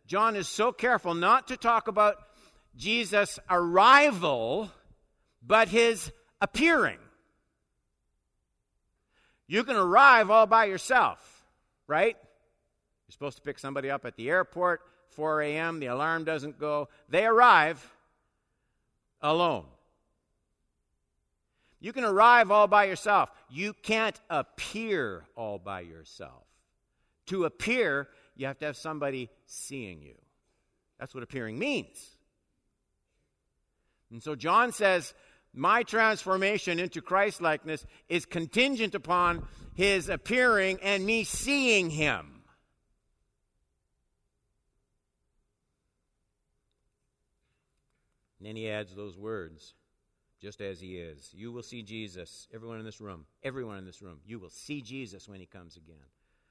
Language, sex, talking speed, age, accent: English, male, 115 wpm, 50-69, American